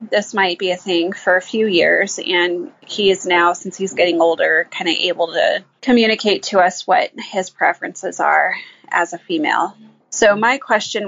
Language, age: English, 20-39